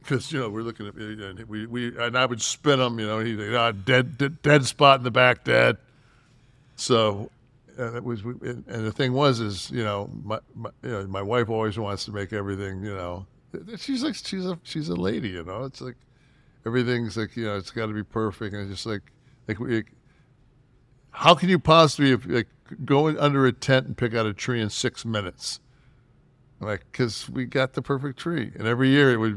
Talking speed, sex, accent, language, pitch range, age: 215 wpm, male, American, English, 105-130 Hz, 60-79